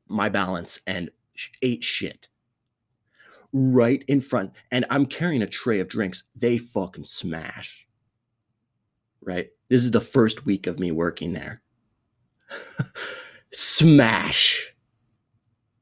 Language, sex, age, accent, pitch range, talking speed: English, male, 30-49, American, 110-125 Hz, 110 wpm